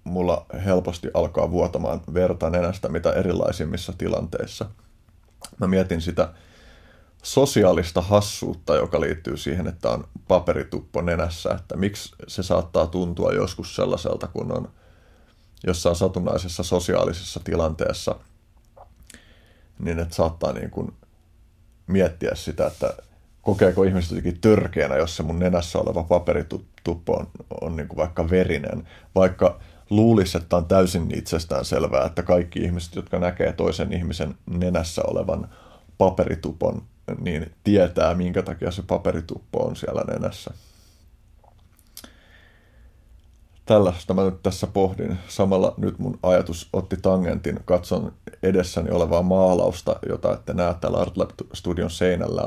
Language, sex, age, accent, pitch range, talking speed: Finnish, male, 30-49, native, 85-95 Hz, 120 wpm